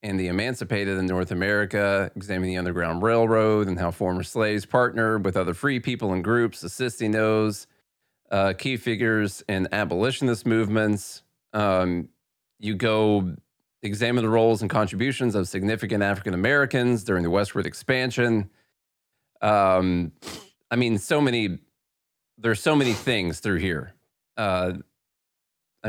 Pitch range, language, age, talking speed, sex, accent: 95-120 Hz, English, 30-49, 130 wpm, male, American